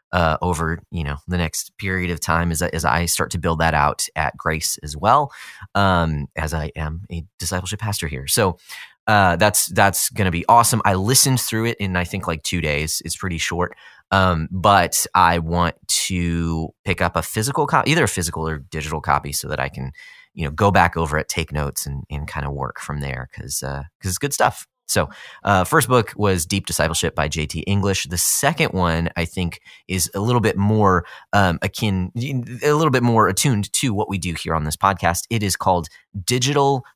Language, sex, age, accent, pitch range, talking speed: English, male, 30-49, American, 80-105 Hz, 210 wpm